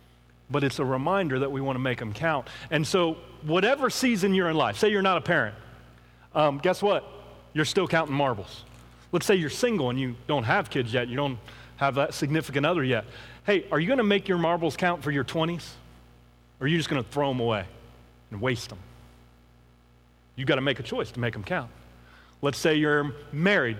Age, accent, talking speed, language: 30-49, American, 205 wpm, English